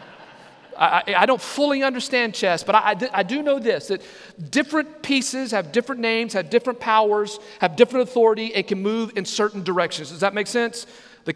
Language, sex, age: English, male, 40-59